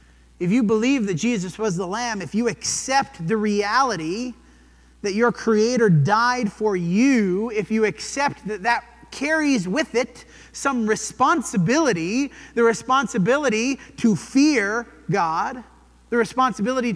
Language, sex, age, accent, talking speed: English, male, 30-49, American, 125 wpm